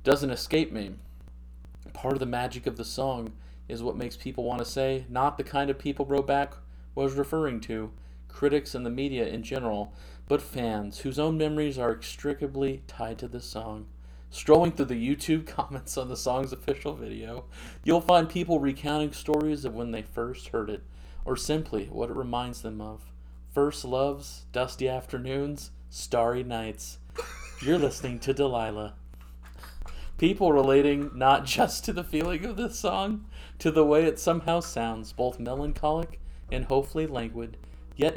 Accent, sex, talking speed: American, male, 160 wpm